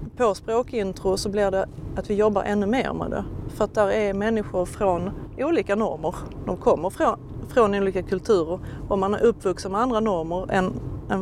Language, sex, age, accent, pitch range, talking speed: Swedish, female, 30-49, native, 185-215 Hz, 180 wpm